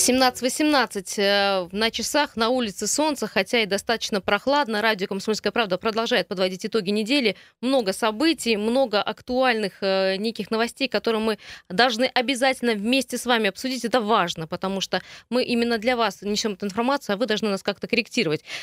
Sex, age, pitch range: female, 20-39, 200-245 Hz